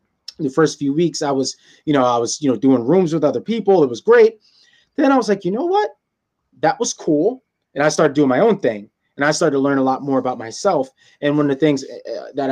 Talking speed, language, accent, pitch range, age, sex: 255 wpm, English, American, 130-160 Hz, 20-39, male